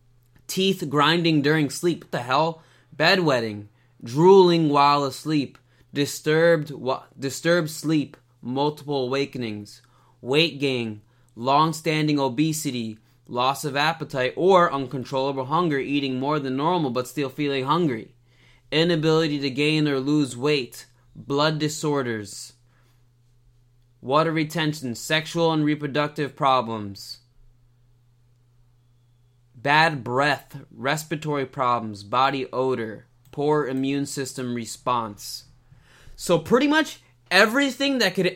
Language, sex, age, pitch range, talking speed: English, male, 20-39, 120-155 Hz, 105 wpm